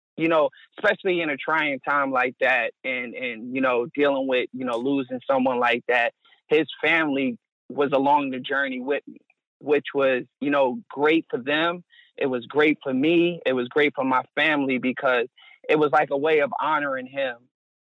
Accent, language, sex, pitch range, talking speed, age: American, English, male, 135-170 Hz, 185 wpm, 30-49